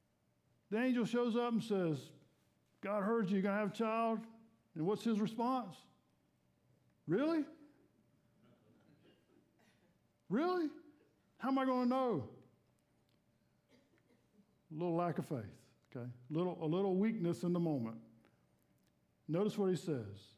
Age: 50-69